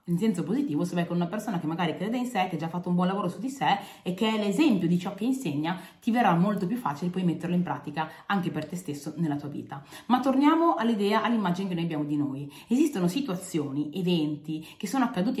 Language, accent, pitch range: Italian, native, 165-235 Hz